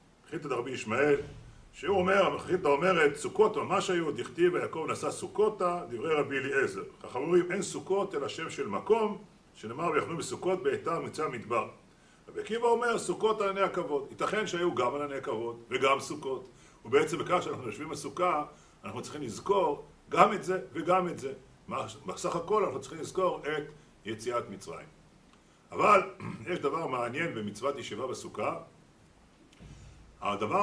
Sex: male